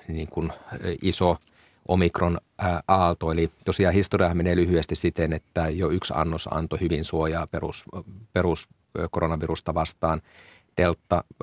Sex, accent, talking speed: male, native, 110 wpm